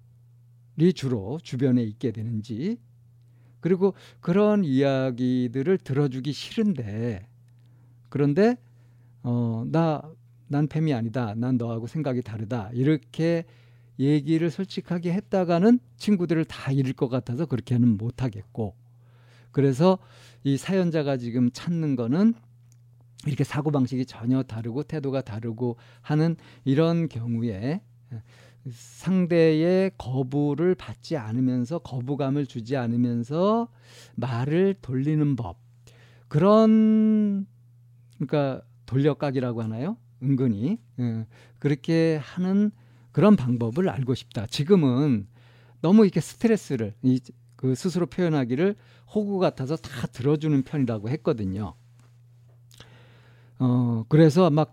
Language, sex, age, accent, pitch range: Korean, male, 50-69, native, 120-160 Hz